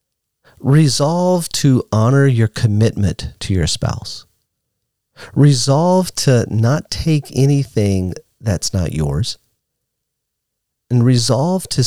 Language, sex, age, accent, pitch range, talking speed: English, male, 40-59, American, 100-135 Hz, 95 wpm